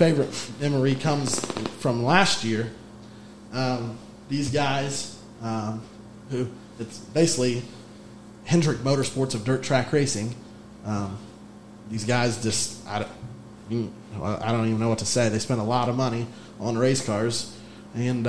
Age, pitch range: 20-39, 110-150 Hz